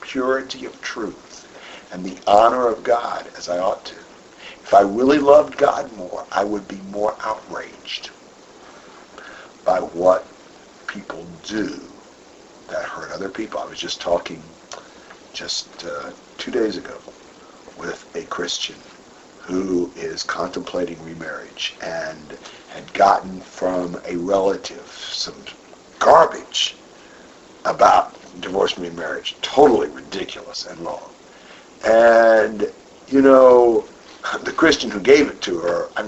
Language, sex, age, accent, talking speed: English, male, 60-79, American, 125 wpm